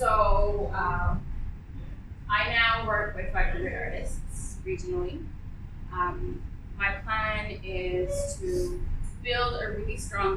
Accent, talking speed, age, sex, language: American, 105 wpm, 20-39, female, English